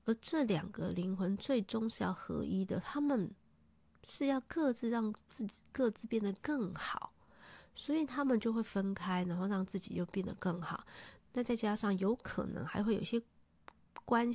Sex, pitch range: female, 185-225 Hz